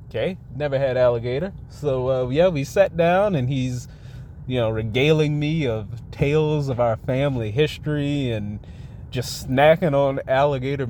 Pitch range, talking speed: 120-150 Hz, 150 wpm